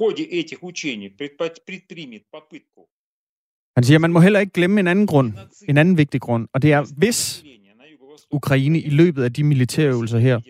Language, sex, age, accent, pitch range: Danish, male, 30-49, native, 120-160 Hz